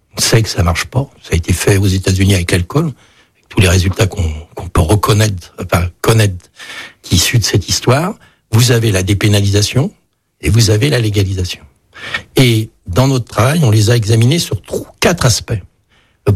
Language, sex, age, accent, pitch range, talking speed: French, male, 60-79, French, 100-130 Hz, 185 wpm